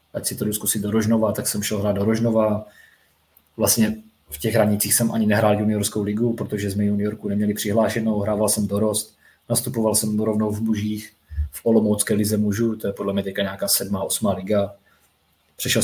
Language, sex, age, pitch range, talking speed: Czech, male, 20-39, 100-110 Hz, 185 wpm